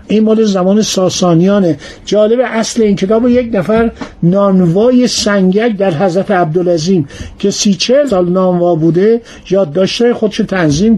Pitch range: 175-225 Hz